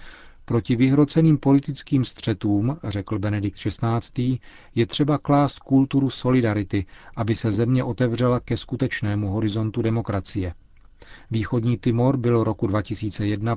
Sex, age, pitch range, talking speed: male, 40-59, 105-120 Hz, 110 wpm